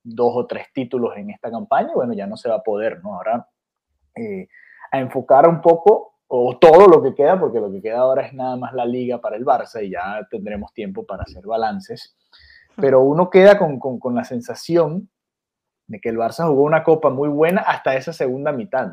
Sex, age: male, 30-49